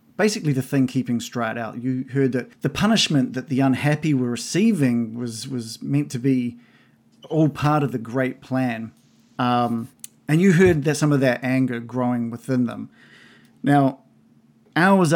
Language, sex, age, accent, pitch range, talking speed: English, male, 40-59, Australian, 120-150 Hz, 160 wpm